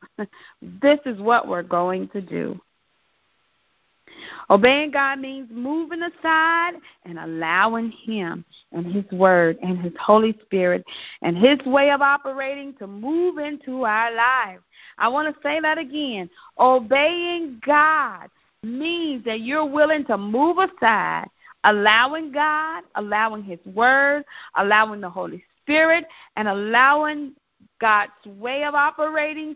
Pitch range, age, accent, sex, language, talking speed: 215-305 Hz, 40-59, American, female, English, 125 wpm